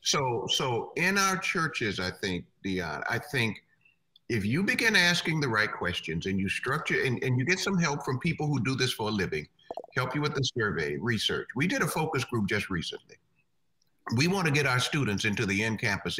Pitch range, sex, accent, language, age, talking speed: 120-185 Hz, male, American, English, 50-69, 210 wpm